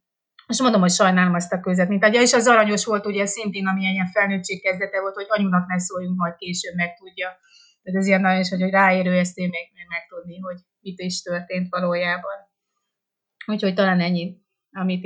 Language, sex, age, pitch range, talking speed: Hungarian, female, 30-49, 180-205 Hz, 195 wpm